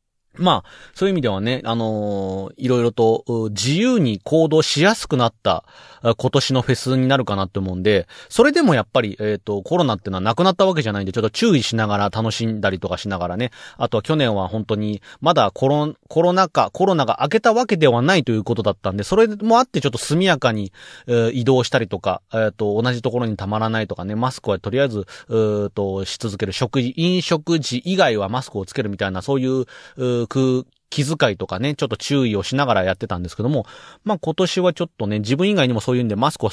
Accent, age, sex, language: native, 30-49, male, Japanese